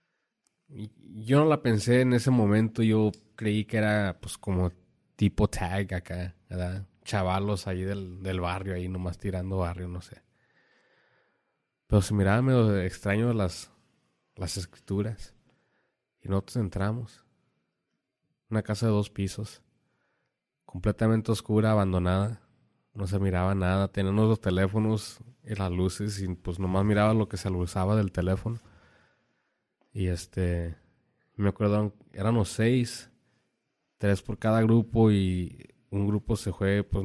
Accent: Mexican